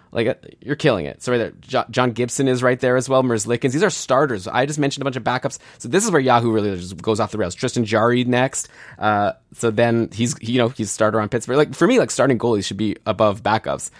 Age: 20-39